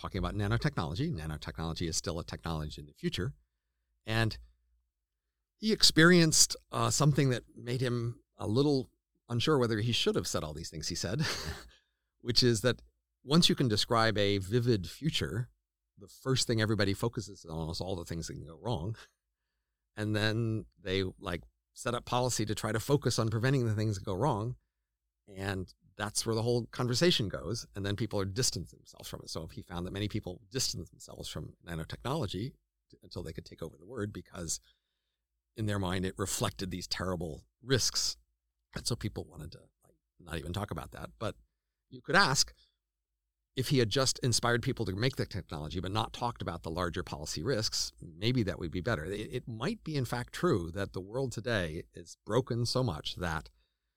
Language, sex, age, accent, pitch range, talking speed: English, male, 50-69, American, 80-120 Hz, 185 wpm